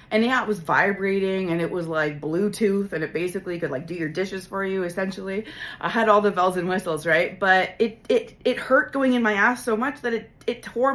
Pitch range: 165-255 Hz